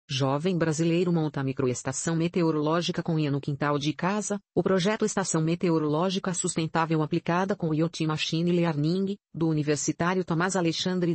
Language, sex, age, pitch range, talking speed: Portuguese, female, 40-59, 150-180 Hz, 140 wpm